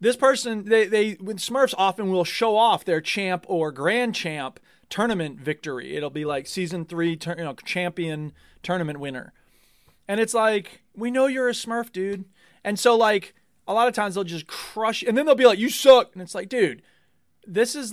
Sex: male